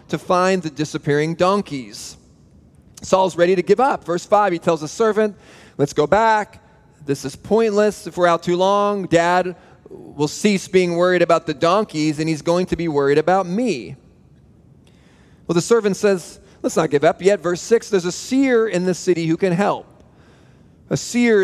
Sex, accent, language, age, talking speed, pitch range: male, American, Russian, 30-49, 180 wpm, 155-200 Hz